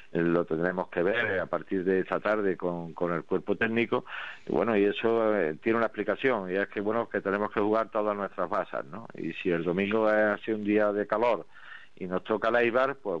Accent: Spanish